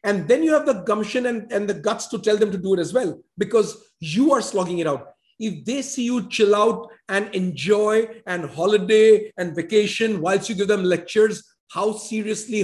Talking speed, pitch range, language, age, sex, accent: 205 wpm, 200-245 Hz, English, 50-69, male, Indian